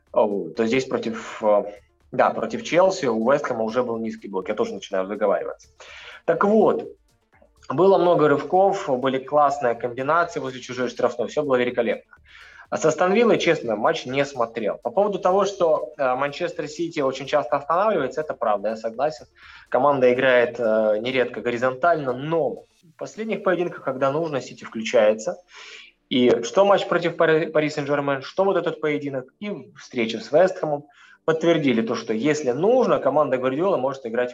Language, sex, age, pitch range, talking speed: Russian, male, 20-39, 120-165 Hz, 145 wpm